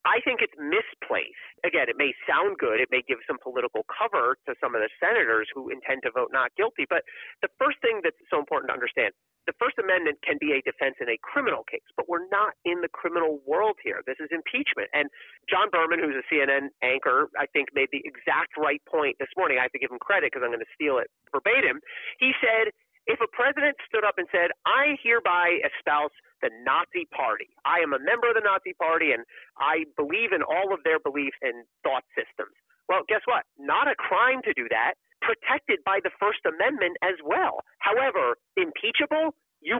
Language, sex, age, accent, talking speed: English, male, 40-59, American, 210 wpm